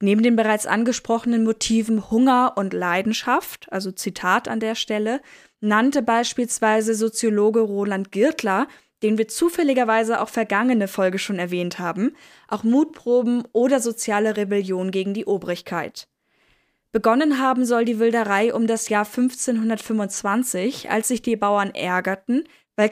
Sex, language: female, German